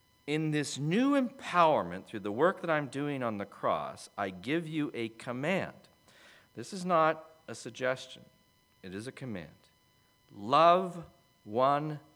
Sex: male